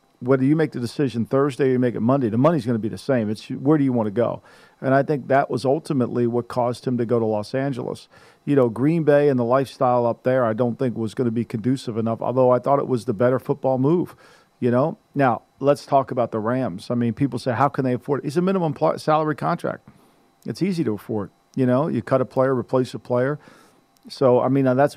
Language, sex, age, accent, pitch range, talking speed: English, male, 50-69, American, 120-150 Hz, 250 wpm